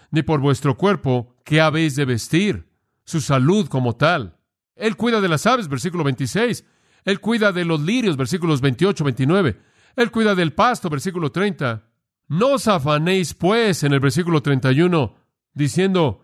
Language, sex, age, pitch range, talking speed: Spanish, male, 50-69, 140-195 Hz, 155 wpm